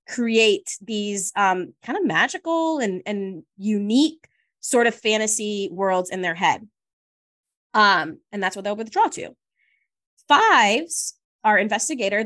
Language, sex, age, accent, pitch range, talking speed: English, female, 20-39, American, 200-235 Hz, 125 wpm